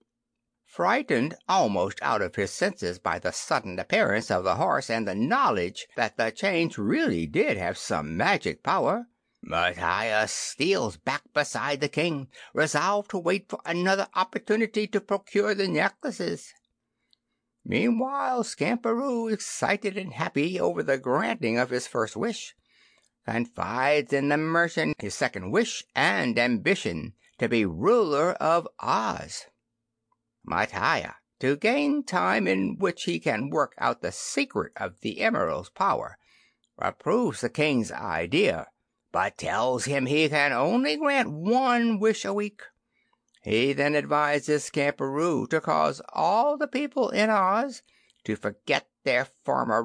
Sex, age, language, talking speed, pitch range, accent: male, 60-79, English, 135 wpm, 135-210 Hz, American